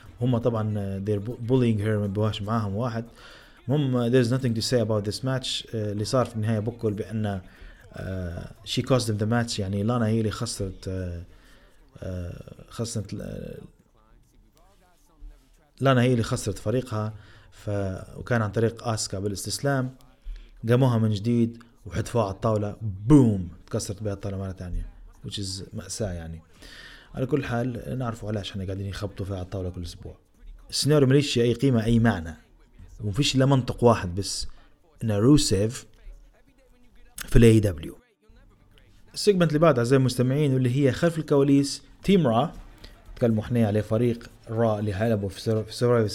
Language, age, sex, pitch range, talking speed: Arabic, 30-49, male, 100-125 Hz, 145 wpm